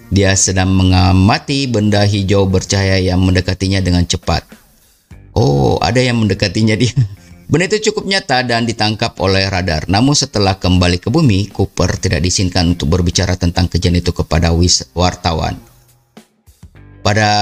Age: 30-49